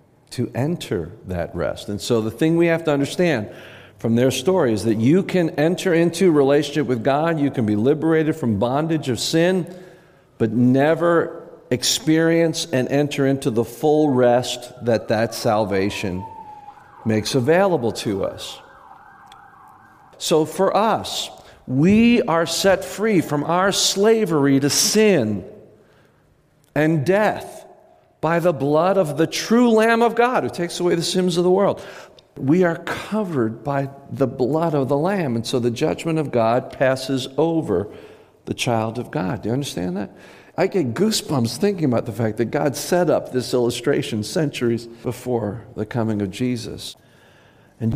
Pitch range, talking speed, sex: 120-175 Hz, 155 wpm, male